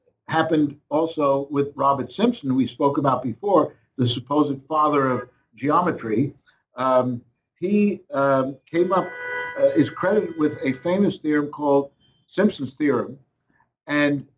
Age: 60-79